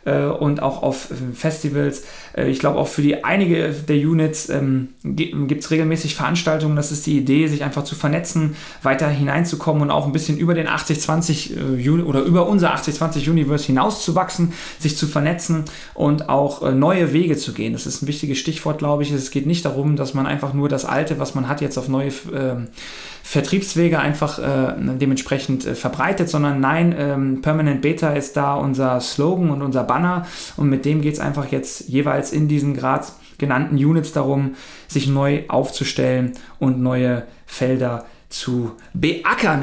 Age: 30-49